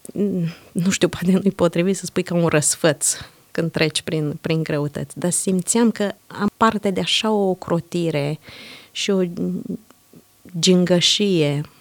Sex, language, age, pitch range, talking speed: female, Romanian, 20-39, 160-200 Hz, 135 wpm